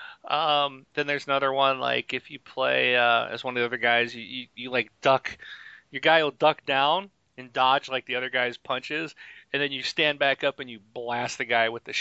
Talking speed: 230 wpm